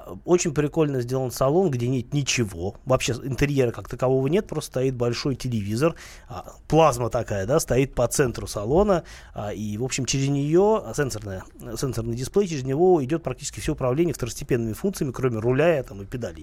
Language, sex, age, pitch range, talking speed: Russian, male, 20-39, 115-145 Hz, 155 wpm